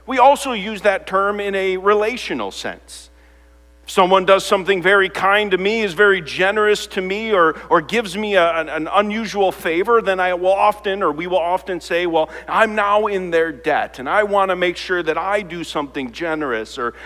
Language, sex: English, male